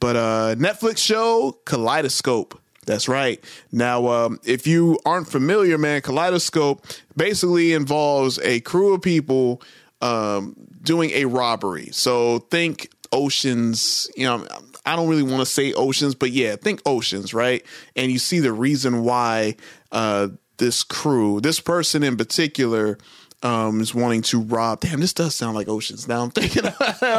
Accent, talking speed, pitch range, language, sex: American, 150 wpm, 120-175 Hz, English, male